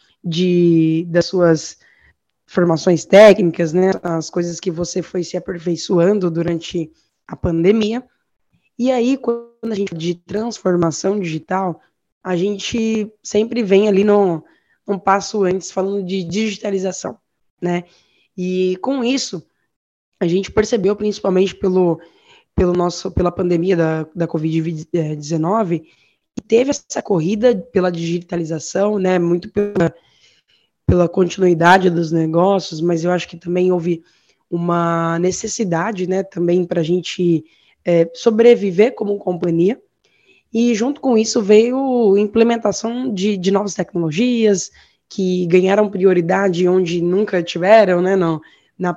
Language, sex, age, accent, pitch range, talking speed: Portuguese, female, 10-29, Brazilian, 175-210 Hz, 125 wpm